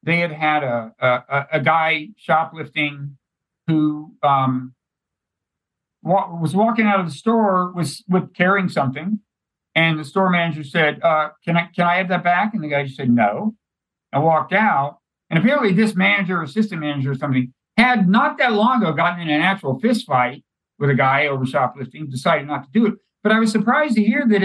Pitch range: 145-200 Hz